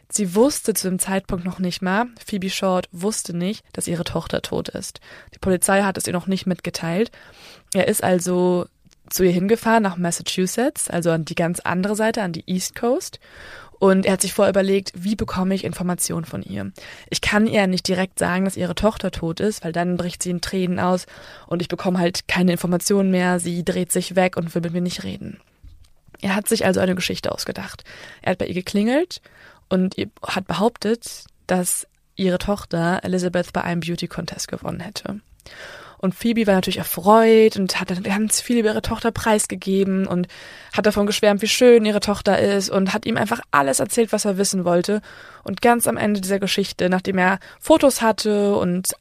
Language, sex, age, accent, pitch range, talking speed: German, female, 20-39, German, 180-210 Hz, 195 wpm